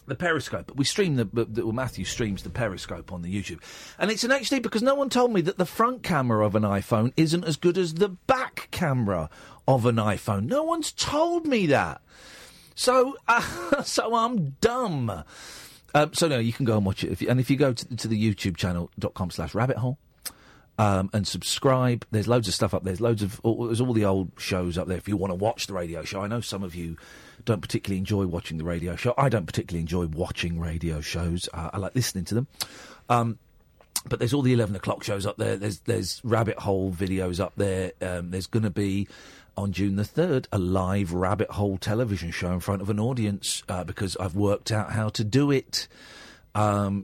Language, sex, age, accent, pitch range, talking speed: English, male, 40-59, British, 95-135 Hz, 220 wpm